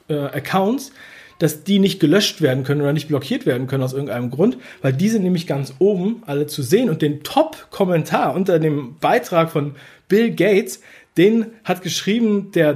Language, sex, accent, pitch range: German, male, German, 145-190 Hz